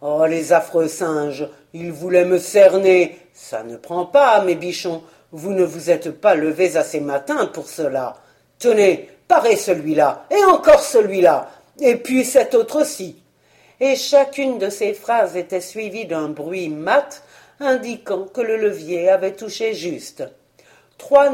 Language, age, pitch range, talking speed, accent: French, 50-69, 175-255 Hz, 150 wpm, French